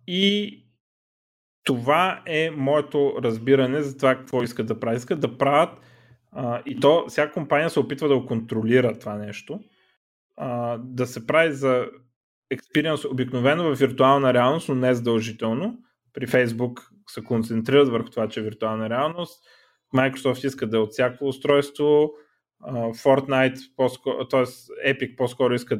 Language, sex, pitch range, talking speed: Bulgarian, male, 115-145 Hz, 140 wpm